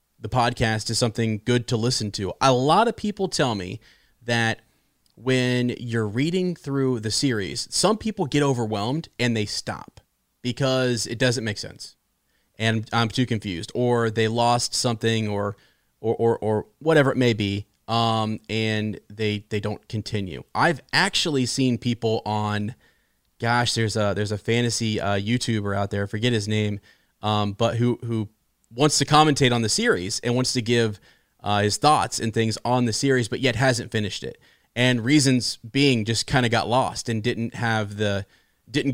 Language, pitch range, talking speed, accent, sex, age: English, 105-125 Hz, 175 wpm, American, male, 30-49